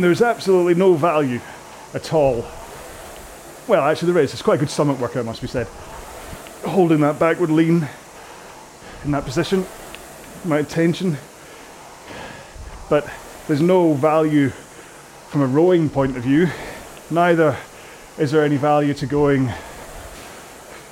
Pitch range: 140-165 Hz